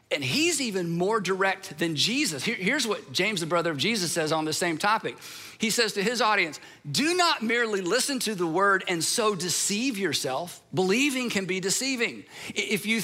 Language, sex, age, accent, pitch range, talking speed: English, male, 50-69, American, 190-240 Hz, 190 wpm